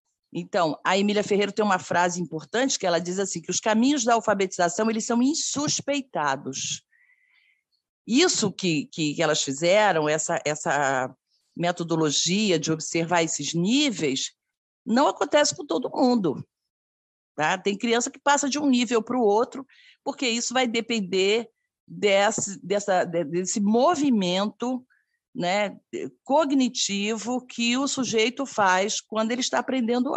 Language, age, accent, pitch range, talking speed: Portuguese, 50-69, Brazilian, 185-250 Hz, 125 wpm